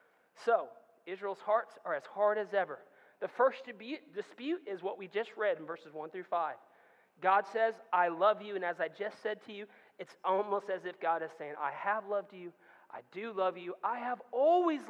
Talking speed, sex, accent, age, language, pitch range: 205 wpm, male, American, 30-49, English, 170-240 Hz